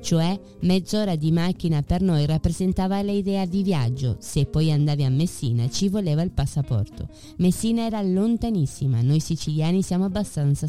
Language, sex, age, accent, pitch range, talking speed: Spanish, female, 20-39, Italian, 140-190 Hz, 145 wpm